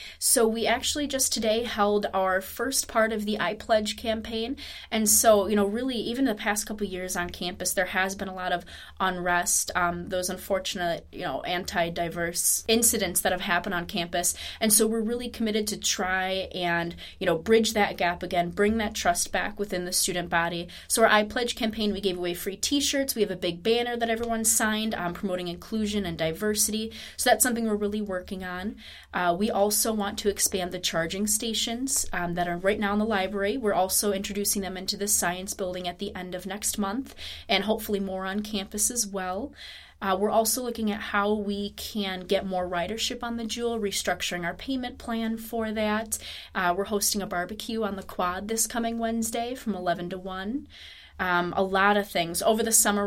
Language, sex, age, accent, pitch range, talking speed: English, female, 20-39, American, 180-220 Hz, 200 wpm